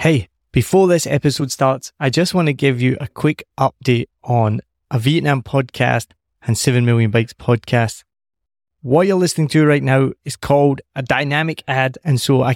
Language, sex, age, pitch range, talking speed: English, male, 20-39, 125-150 Hz, 175 wpm